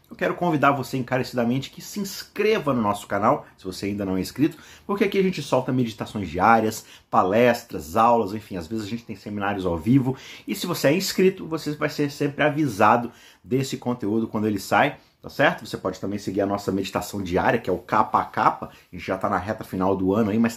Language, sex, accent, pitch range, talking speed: Portuguese, male, Brazilian, 100-135 Hz, 225 wpm